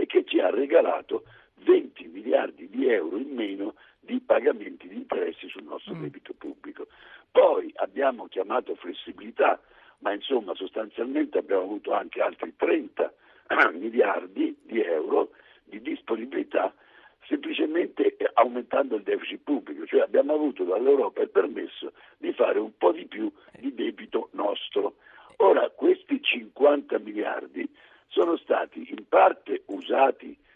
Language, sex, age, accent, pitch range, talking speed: Italian, male, 60-79, native, 315-440 Hz, 125 wpm